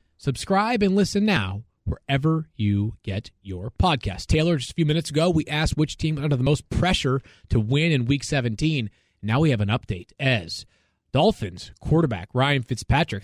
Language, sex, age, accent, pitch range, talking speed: English, male, 30-49, American, 115-170 Hz, 170 wpm